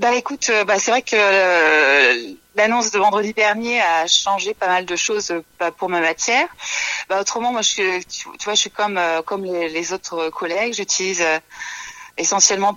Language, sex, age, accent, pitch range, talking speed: French, female, 30-49, French, 185-220 Hz, 190 wpm